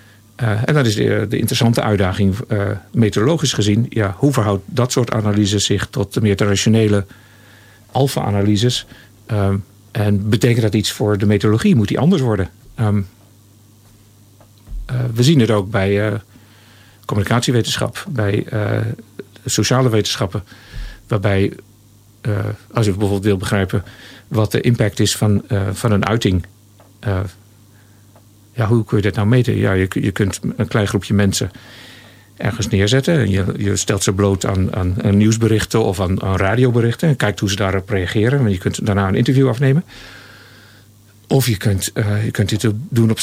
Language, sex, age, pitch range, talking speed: Dutch, male, 50-69, 100-115 Hz, 160 wpm